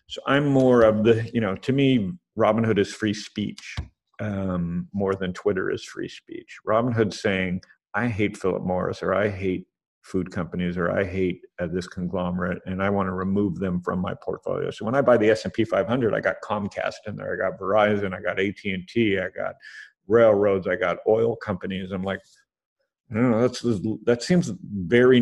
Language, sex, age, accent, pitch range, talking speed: English, male, 50-69, American, 95-115 Hz, 190 wpm